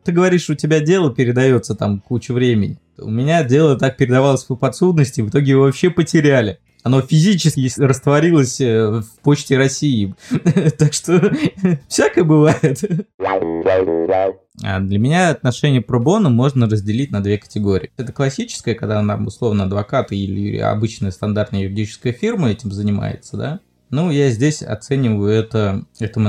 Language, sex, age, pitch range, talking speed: Russian, male, 20-39, 105-135 Hz, 140 wpm